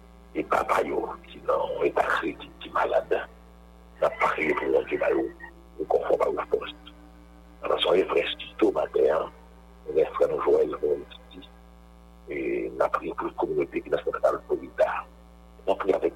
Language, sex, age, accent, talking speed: English, male, 60-79, French, 200 wpm